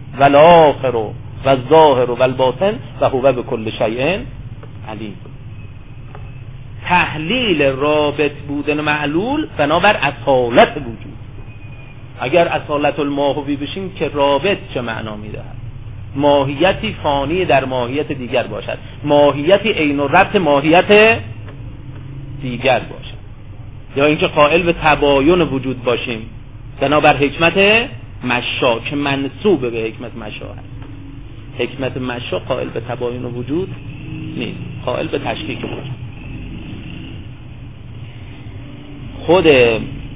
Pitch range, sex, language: 120-145 Hz, male, Persian